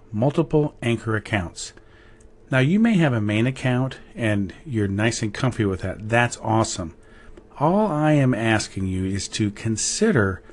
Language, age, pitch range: English, 40-59, 105-130 Hz